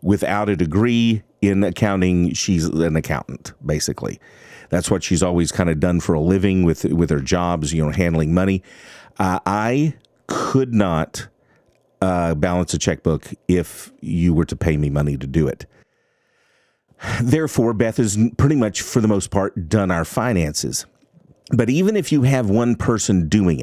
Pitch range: 85-115 Hz